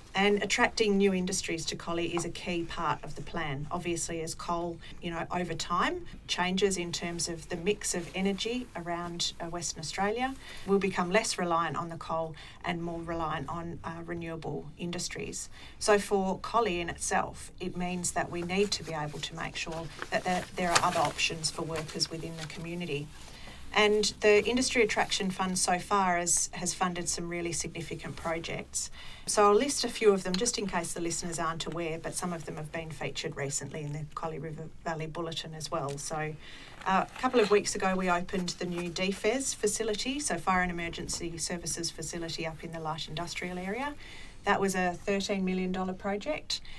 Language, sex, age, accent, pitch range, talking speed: English, female, 40-59, Australian, 165-195 Hz, 185 wpm